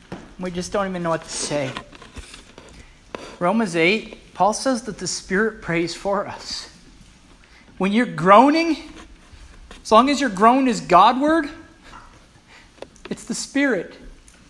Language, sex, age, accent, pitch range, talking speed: English, male, 40-59, American, 180-290 Hz, 130 wpm